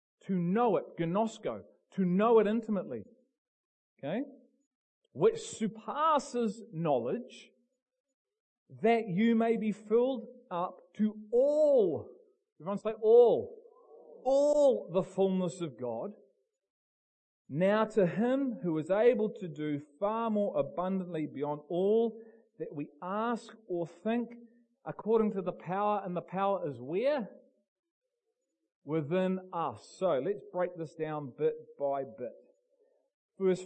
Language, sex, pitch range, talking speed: English, male, 180-240 Hz, 120 wpm